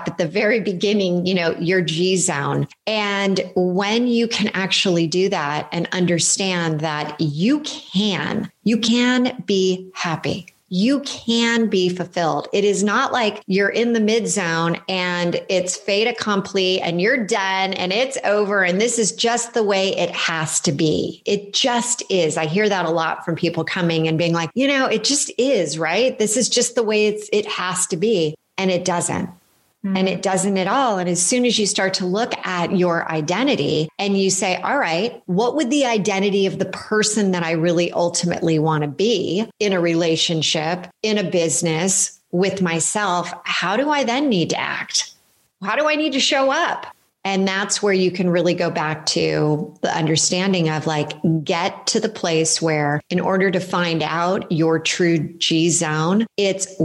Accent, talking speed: American, 185 wpm